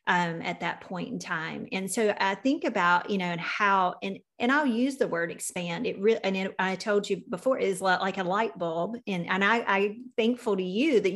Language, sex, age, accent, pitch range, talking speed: English, female, 30-49, American, 185-240 Hz, 215 wpm